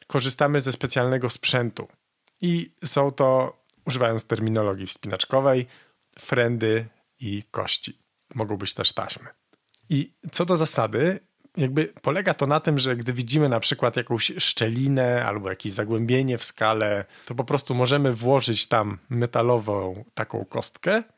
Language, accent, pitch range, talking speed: Polish, native, 115-135 Hz, 135 wpm